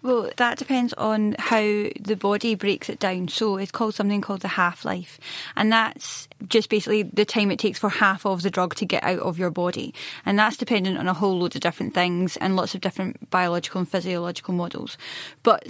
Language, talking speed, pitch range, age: English, 210 wpm, 185-220 Hz, 10-29